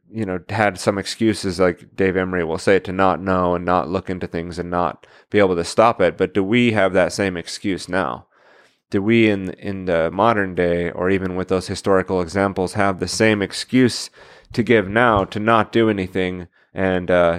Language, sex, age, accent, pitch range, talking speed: English, male, 30-49, American, 95-110 Hz, 205 wpm